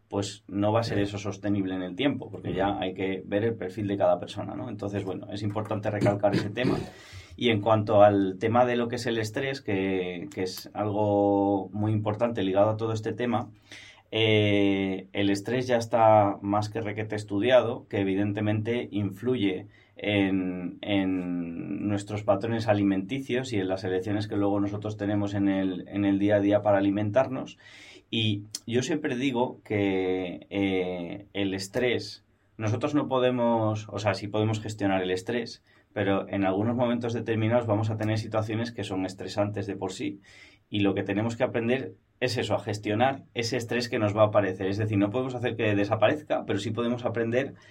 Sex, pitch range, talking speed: male, 100-115 Hz, 180 wpm